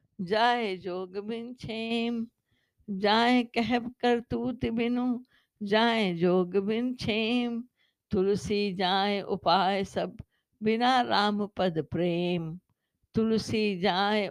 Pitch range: 190-235 Hz